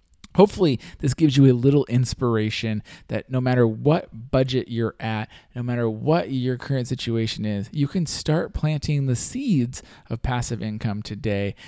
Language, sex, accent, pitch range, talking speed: English, male, American, 110-150 Hz, 160 wpm